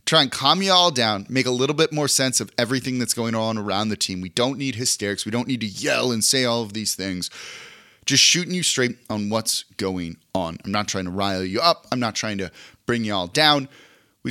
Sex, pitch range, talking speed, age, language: male, 105-135 Hz, 250 wpm, 30-49, English